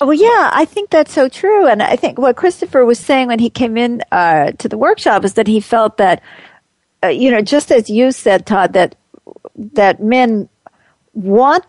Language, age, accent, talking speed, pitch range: English, 50-69, American, 200 wpm, 200-265 Hz